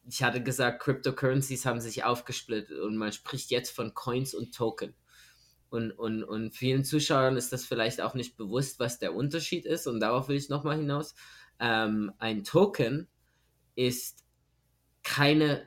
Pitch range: 110-140 Hz